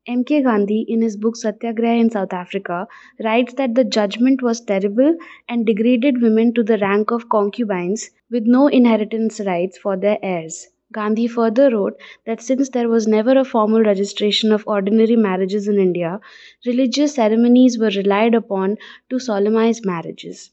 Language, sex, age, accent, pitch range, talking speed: English, female, 20-39, Indian, 205-240 Hz, 160 wpm